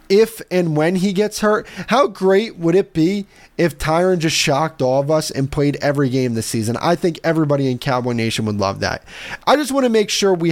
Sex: male